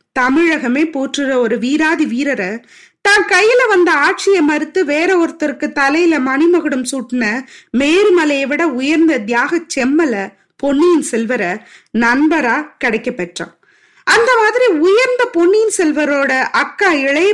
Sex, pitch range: female, 250-350 Hz